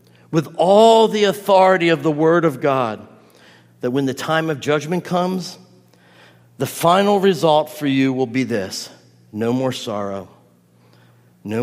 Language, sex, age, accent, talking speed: English, male, 50-69, American, 145 wpm